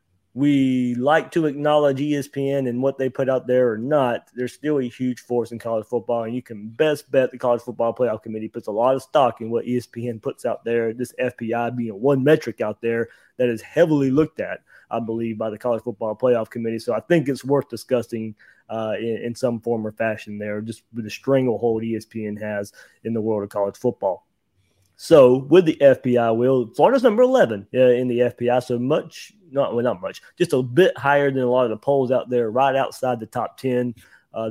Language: English